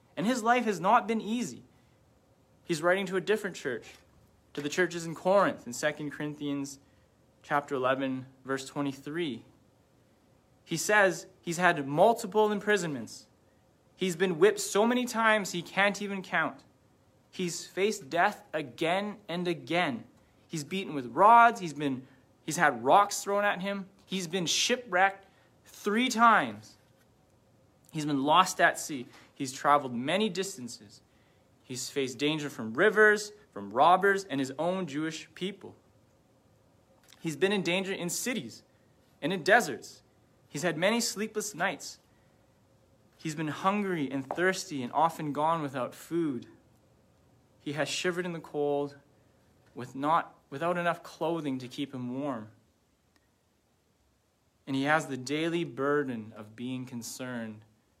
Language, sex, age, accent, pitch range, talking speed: English, male, 30-49, American, 130-190 Hz, 135 wpm